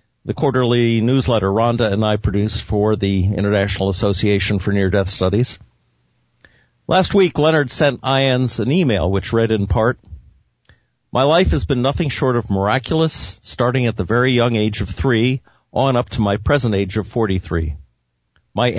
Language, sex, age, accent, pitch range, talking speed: English, male, 50-69, American, 100-125 Hz, 165 wpm